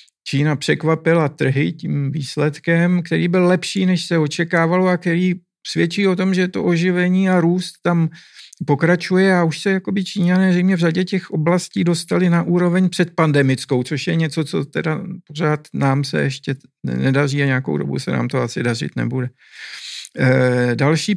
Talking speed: 155 wpm